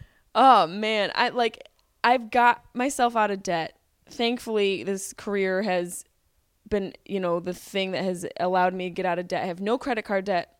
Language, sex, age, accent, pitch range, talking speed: English, female, 20-39, American, 200-275 Hz, 195 wpm